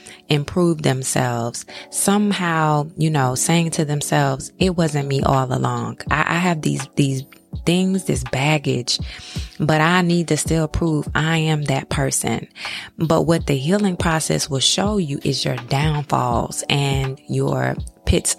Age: 20-39